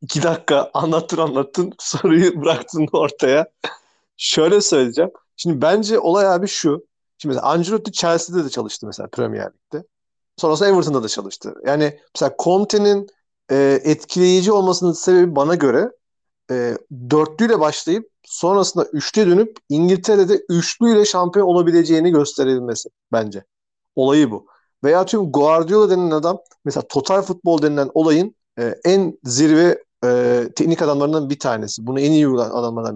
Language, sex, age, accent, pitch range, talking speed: Turkish, male, 40-59, native, 140-195 Hz, 130 wpm